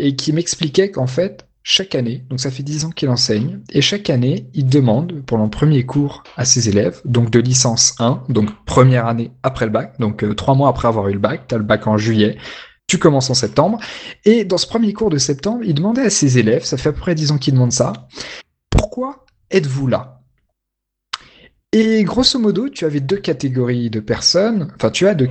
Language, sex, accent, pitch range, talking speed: French, male, French, 125-170 Hz, 220 wpm